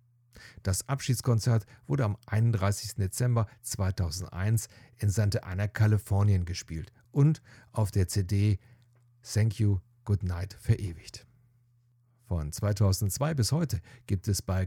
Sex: male